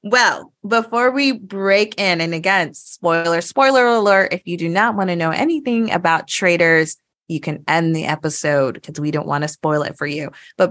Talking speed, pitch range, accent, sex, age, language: 195 wpm, 155-205 Hz, American, female, 20-39, English